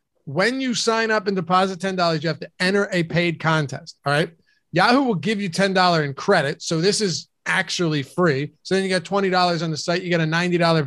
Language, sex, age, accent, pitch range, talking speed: English, male, 30-49, American, 155-185 Hz, 220 wpm